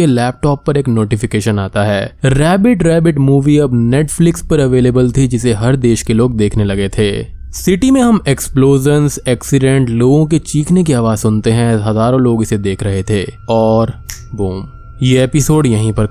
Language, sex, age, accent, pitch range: Hindi, male, 20-39, native, 110-150 Hz